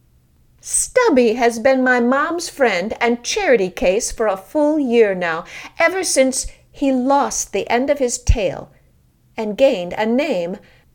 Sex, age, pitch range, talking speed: female, 50-69, 180-260 Hz, 150 wpm